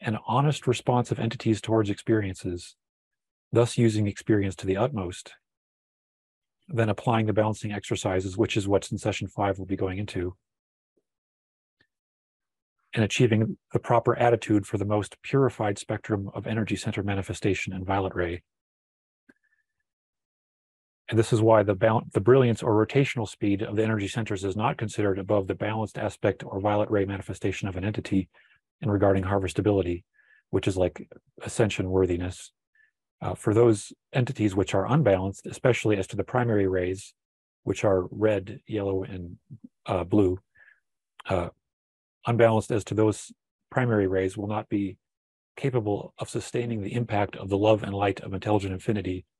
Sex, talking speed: male, 150 wpm